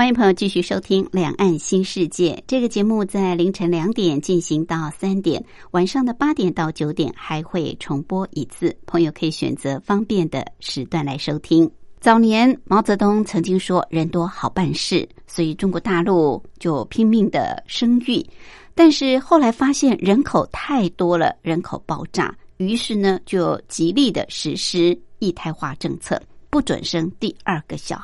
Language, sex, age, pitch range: Chinese, male, 60-79, 165-225 Hz